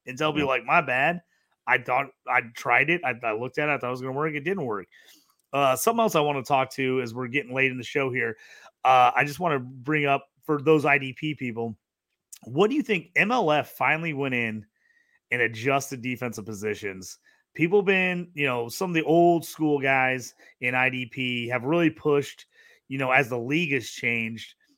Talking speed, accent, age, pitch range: 210 wpm, American, 30-49, 125-155 Hz